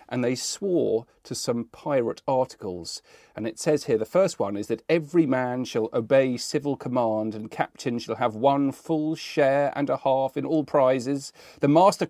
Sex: male